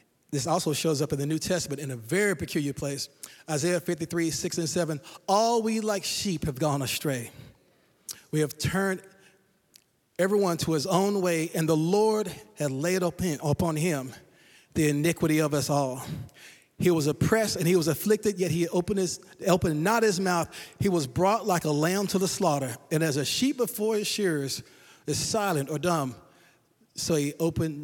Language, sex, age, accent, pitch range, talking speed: English, male, 30-49, American, 150-190 Hz, 175 wpm